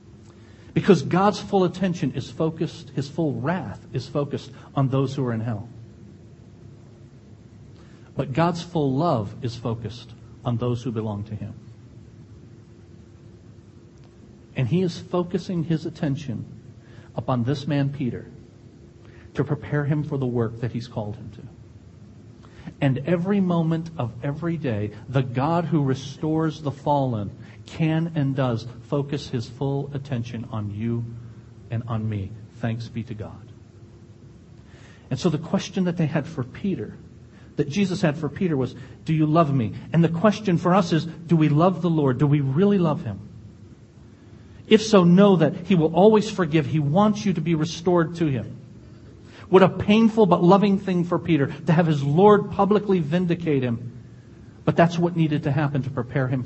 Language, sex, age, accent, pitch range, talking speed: English, male, 50-69, American, 115-165 Hz, 165 wpm